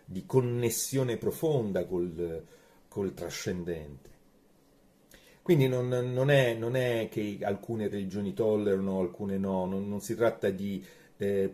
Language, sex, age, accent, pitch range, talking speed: Italian, male, 30-49, native, 100-125 Hz, 125 wpm